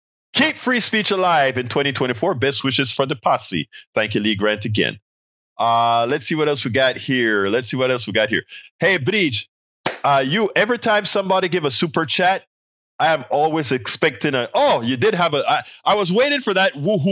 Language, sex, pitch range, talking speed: English, male, 125-190 Hz, 205 wpm